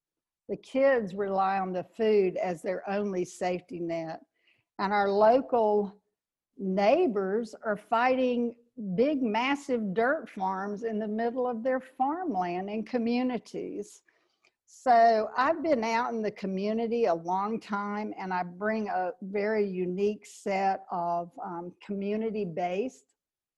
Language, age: English, 60-79